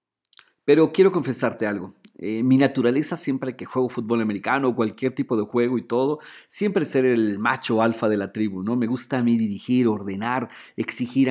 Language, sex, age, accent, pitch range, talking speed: Spanish, male, 40-59, Mexican, 115-145 Hz, 185 wpm